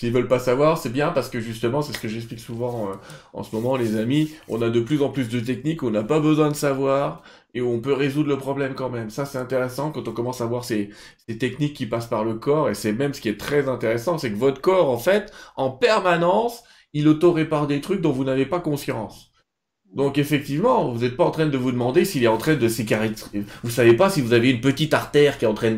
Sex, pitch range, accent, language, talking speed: male, 115-155 Hz, French, French, 270 wpm